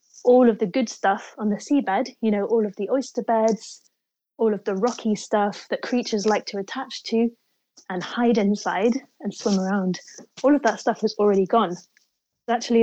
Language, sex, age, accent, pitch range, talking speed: Dutch, female, 30-49, British, 195-225 Hz, 185 wpm